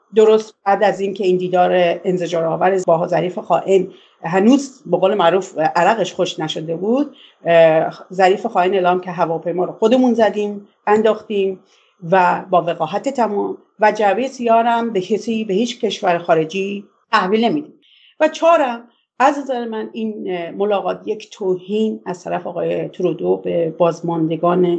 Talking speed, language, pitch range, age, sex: 140 wpm, English, 175-215 Hz, 40-59, female